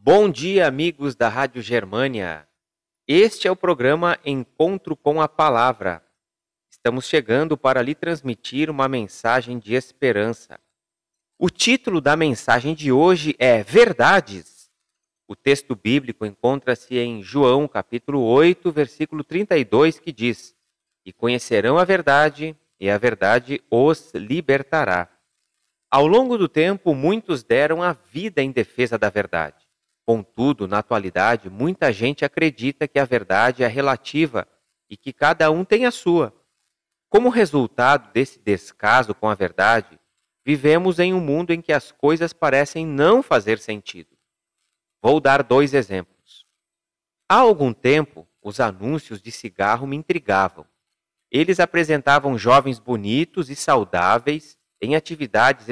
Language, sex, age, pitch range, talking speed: Portuguese, male, 40-59, 120-160 Hz, 130 wpm